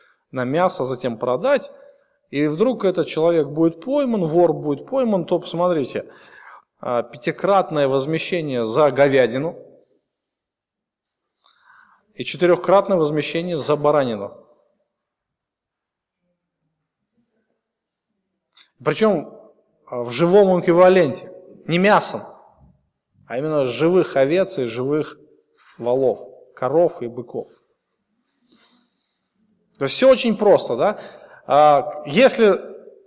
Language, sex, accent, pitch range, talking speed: Russian, male, native, 150-210 Hz, 85 wpm